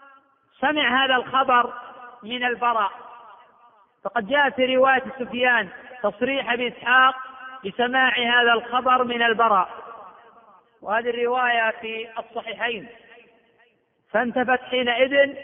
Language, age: Arabic, 40-59